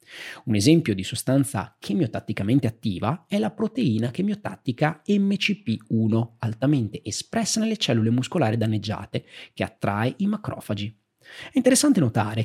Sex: male